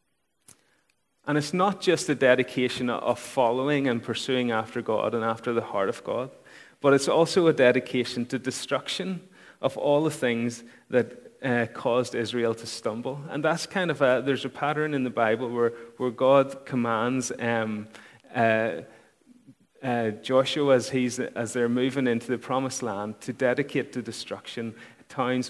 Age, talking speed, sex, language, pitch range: 30-49, 160 wpm, male, English, 115-135 Hz